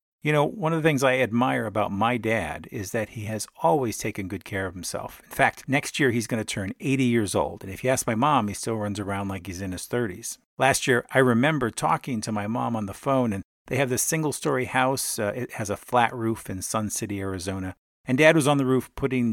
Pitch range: 100-130 Hz